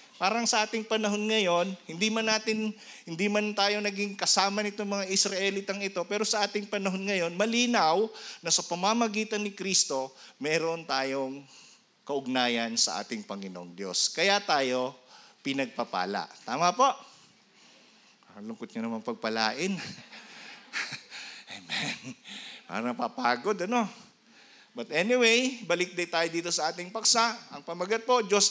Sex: male